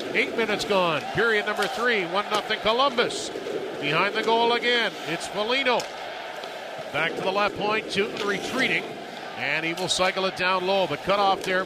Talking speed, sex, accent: 165 wpm, male, American